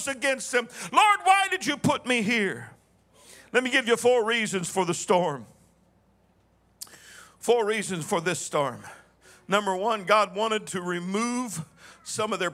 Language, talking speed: English, 155 wpm